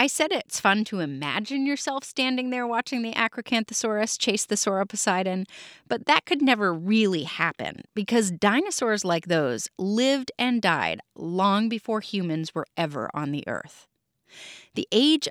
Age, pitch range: 30-49, 180-255 Hz